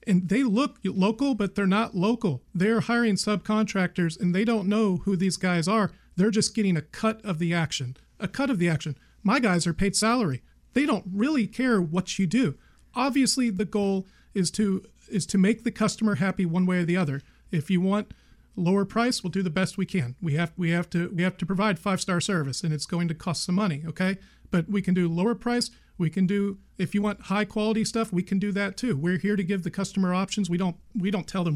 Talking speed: 235 wpm